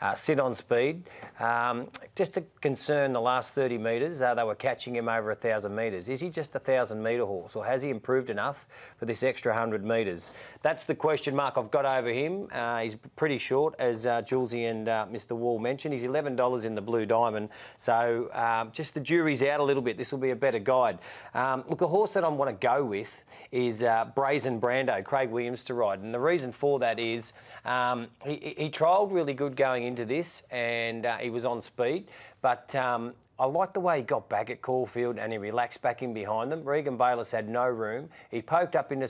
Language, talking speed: English, 225 wpm